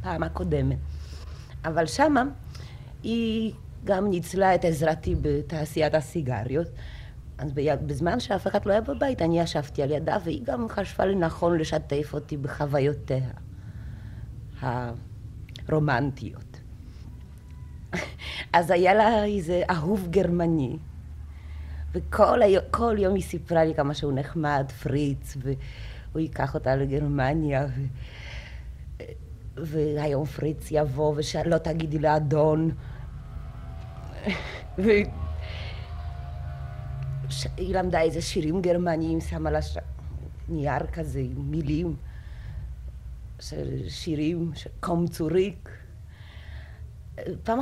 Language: Hebrew